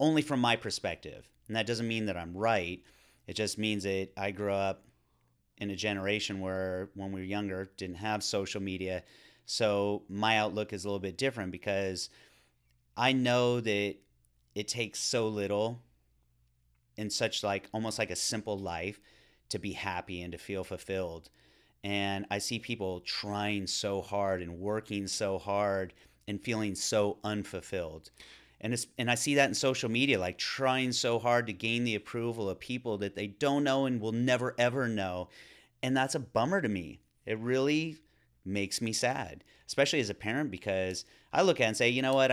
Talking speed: 185 wpm